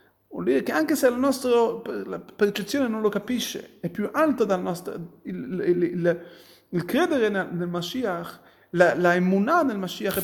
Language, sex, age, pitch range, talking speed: Italian, male, 30-49, 175-230 Hz, 175 wpm